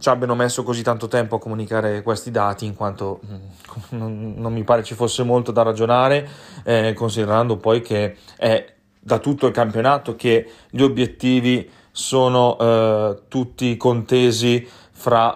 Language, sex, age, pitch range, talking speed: Italian, male, 30-49, 110-125 Hz, 145 wpm